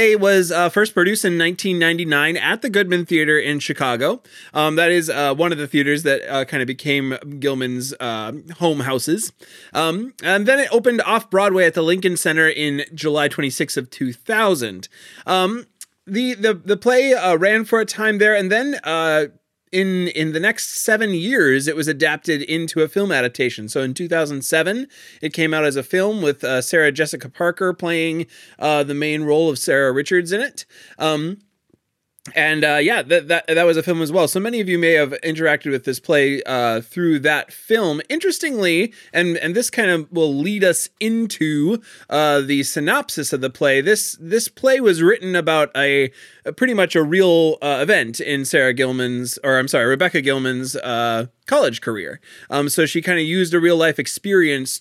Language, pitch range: English, 140-185 Hz